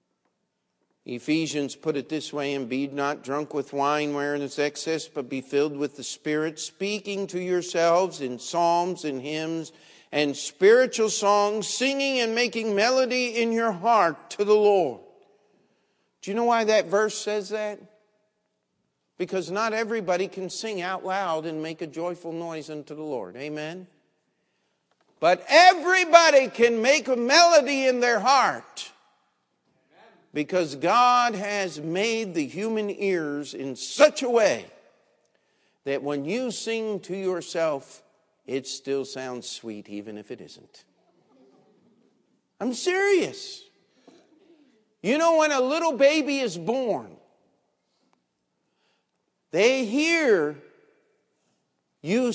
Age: 50-69